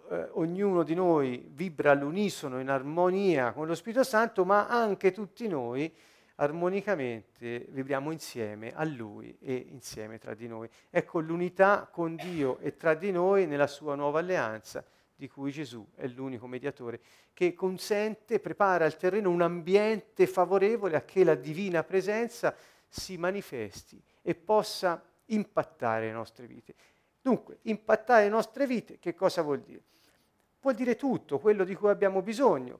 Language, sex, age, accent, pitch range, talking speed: Italian, male, 40-59, native, 145-210 Hz, 150 wpm